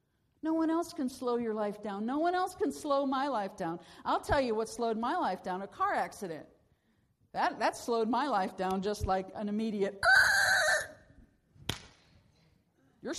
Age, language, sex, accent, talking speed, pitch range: 50-69, English, female, American, 175 wpm, 180-270 Hz